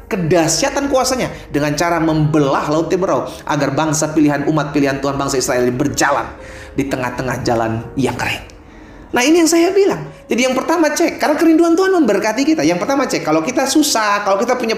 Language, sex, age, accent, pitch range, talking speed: Indonesian, male, 30-49, native, 160-235 Hz, 180 wpm